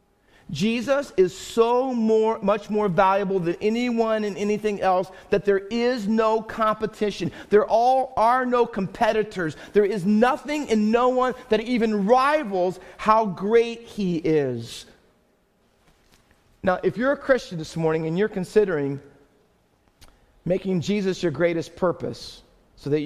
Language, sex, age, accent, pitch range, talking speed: English, male, 40-59, American, 170-225 Hz, 135 wpm